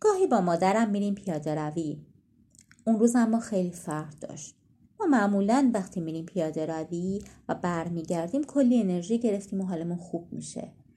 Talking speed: 150 wpm